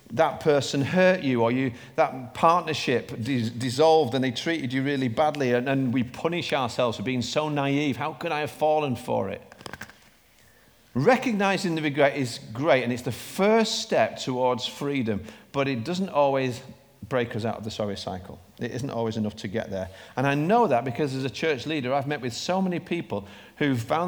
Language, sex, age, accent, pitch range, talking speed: English, male, 40-59, British, 115-150 Hz, 190 wpm